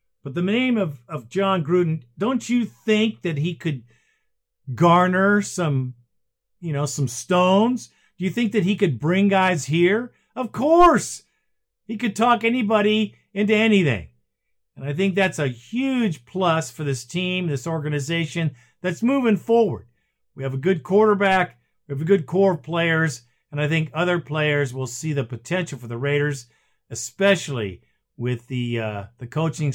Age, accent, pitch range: 50-69, American, 130-180 Hz